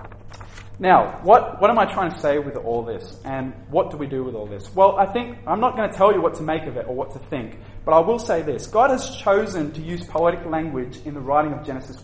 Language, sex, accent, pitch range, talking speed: English, male, Australian, 120-170 Hz, 270 wpm